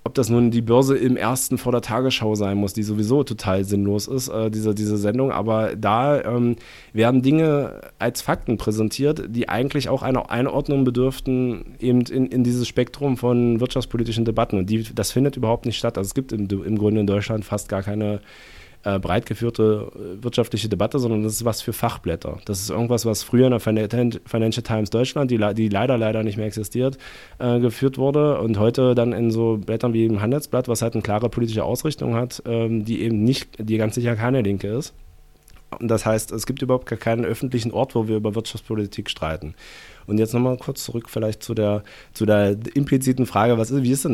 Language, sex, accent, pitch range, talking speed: German, male, German, 110-125 Hz, 195 wpm